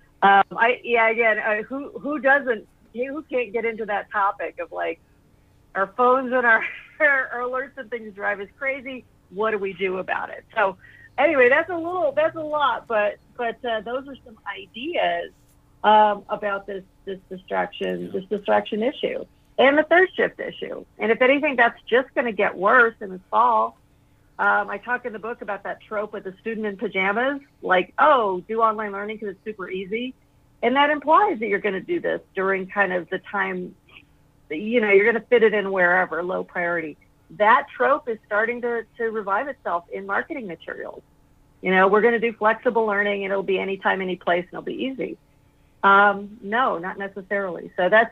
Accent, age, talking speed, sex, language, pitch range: American, 50-69, 195 wpm, female, English, 195-245 Hz